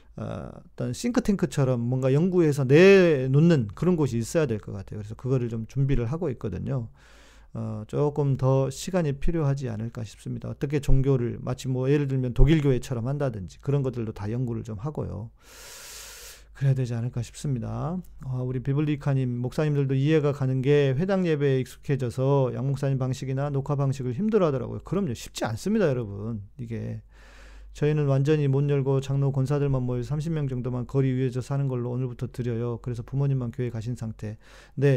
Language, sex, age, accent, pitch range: Korean, male, 40-59, native, 125-160 Hz